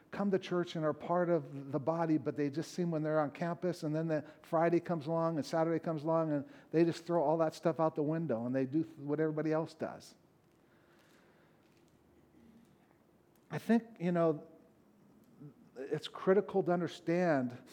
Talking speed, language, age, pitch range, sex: 175 wpm, English, 50-69, 140-175 Hz, male